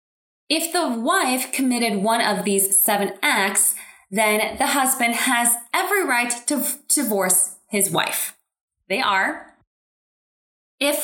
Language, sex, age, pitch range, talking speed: English, female, 20-39, 220-320 Hz, 120 wpm